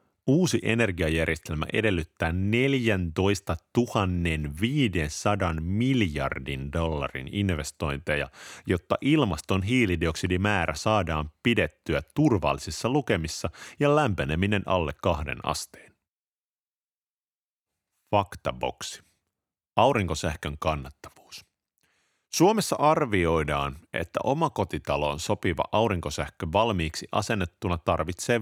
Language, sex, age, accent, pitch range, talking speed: Finnish, male, 30-49, native, 80-110 Hz, 70 wpm